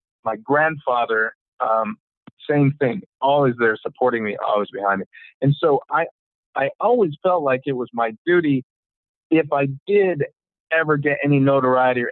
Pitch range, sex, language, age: 125-170 Hz, male, English, 50-69